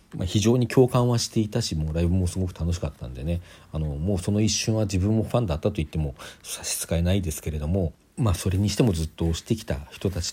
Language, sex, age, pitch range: Japanese, male, 40-59, 85-115 Hz